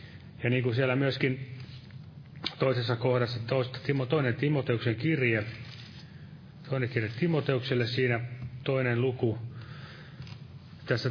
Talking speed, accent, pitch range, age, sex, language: 95 wpm, native, 120-145 Hz, 30-49, male, Finnish